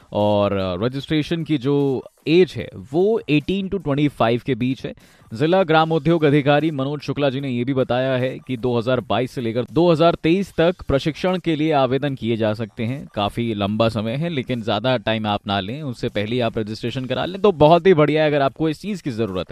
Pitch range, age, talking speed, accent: 120-170 Hz, 20-39, 200 wpm, native